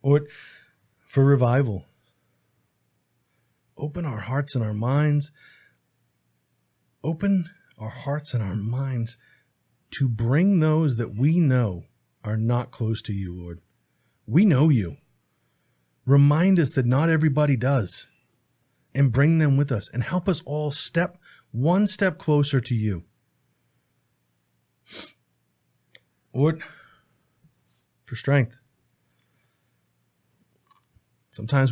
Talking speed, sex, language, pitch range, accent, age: 100 wpm, male, English, 100-140 Hz, American, 40-59